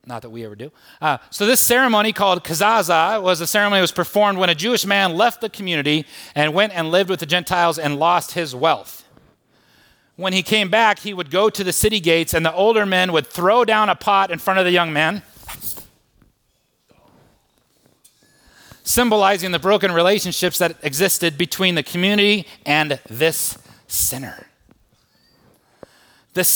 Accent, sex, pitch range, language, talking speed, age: American, male, 120-190 Hz, English, 165 wpm, 30-49